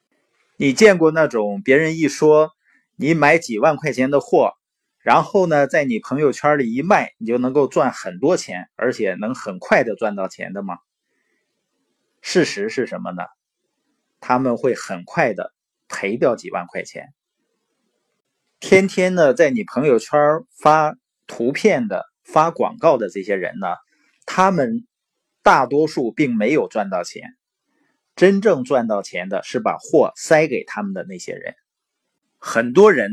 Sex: male